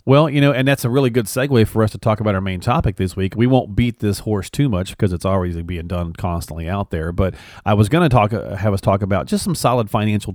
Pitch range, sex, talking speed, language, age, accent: 95-120 Hz, male, 275 wpm, English, 40-59, American